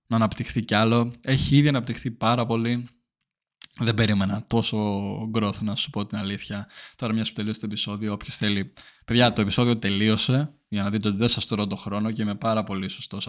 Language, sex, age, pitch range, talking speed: Greek, male, 20-39, 105-125 Hz, 205 wpm